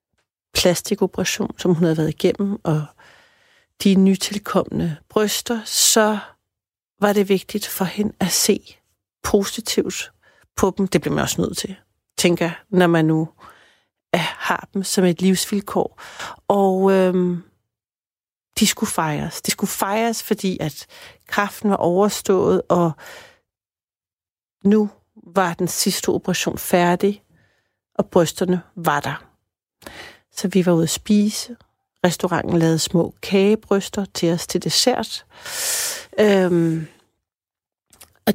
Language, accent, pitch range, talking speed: Danish, native, 165-205 Hz, 115 wpm